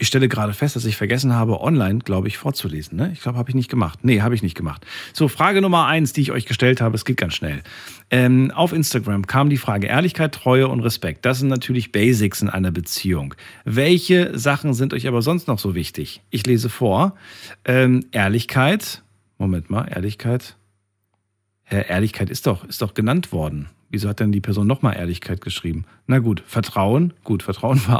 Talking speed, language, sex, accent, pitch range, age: 200 wpm, German, male, German, 100-135 Hz, 40-59